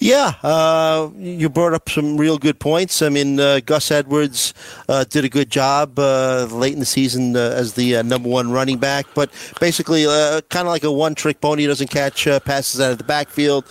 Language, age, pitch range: English, 40-59, 125-155 Hz